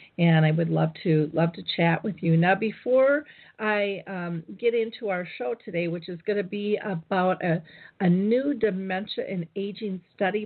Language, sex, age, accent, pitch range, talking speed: English, female, 40-59, American, 170-205 Hz, 185 wpm